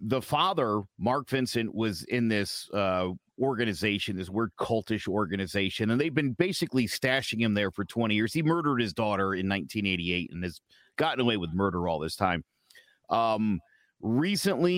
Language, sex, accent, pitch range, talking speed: English, male, American, 95-120 Hz, 160 wpm